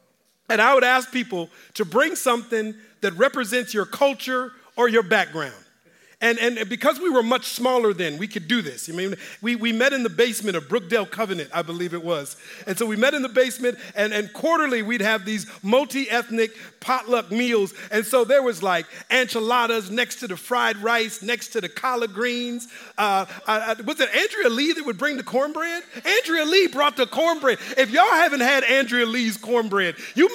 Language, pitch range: English, 210-265 Hz